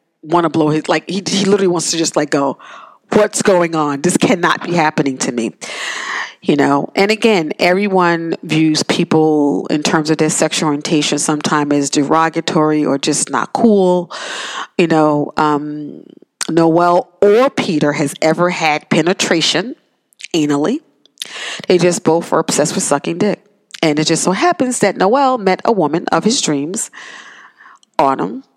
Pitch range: 150-205 Hz